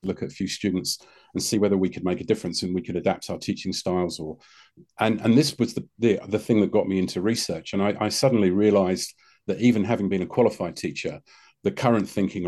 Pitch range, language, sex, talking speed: 90-115 Hz, English, male, 235 wpm